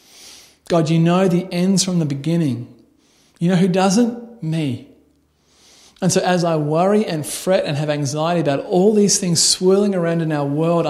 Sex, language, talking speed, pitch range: male, English, 175 wpm, 130-170 Hz